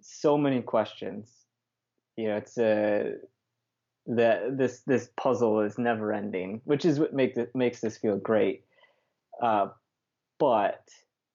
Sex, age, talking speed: male, 20-39, 125 wpm